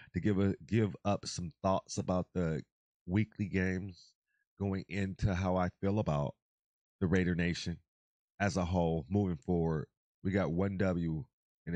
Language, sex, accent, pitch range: English, male, American, 90-120 Hz